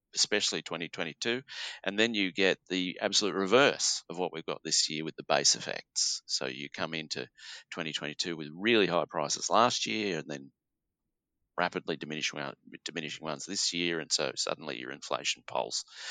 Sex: male